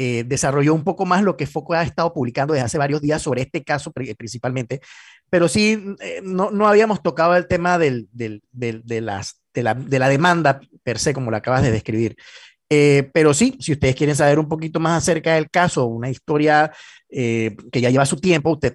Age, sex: 30-49, male